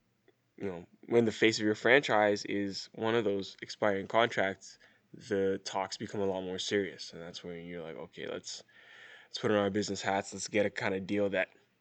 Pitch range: 100-110 Hz